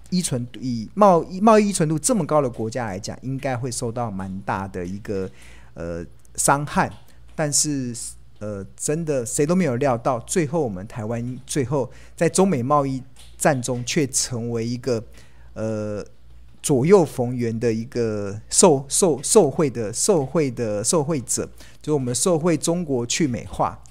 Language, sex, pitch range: Chinese, male, 110-155 Hz